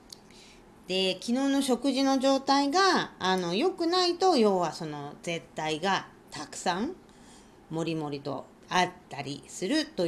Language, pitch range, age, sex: Japanese, 175-275 Hz, 40-59, female